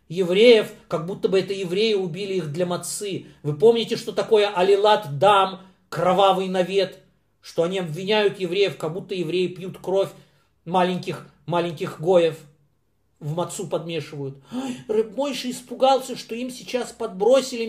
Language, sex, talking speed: Russian, male, 130 wpm